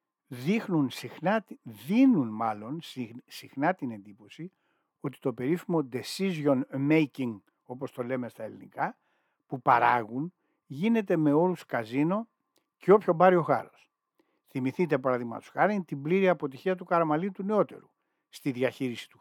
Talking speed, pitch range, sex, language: 130 wpm, 125-180 Hz, male, Greek